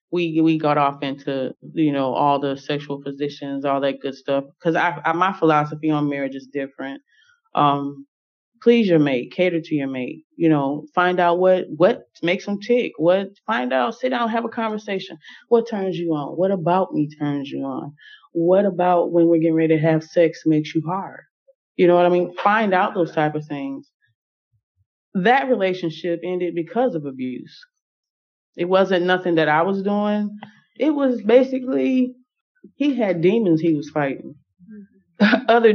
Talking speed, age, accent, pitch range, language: 175 wpm, 20-39, American, 155-225 Hz, English